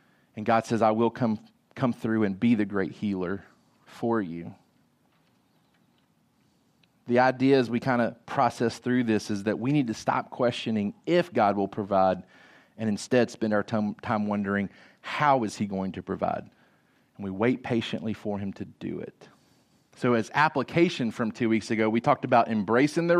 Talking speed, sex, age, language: 175 wpm, male, 30-49, English